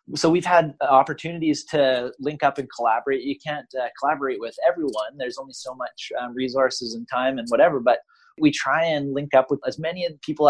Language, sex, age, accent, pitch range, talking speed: English, male, 30-49, American, 105-135 Hz, 200 wpm